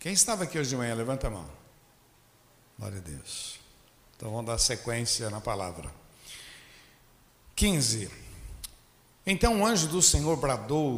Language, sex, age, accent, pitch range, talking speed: Portuguese, male, 60-79, Brazilian, 120-170 Hz, 135 wpm